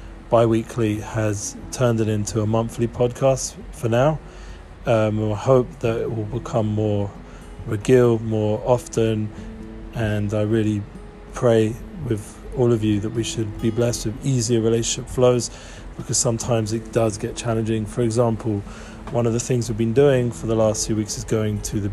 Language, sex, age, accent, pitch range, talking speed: English, male, 40-59, British, 110-120 Hz, 175 wpm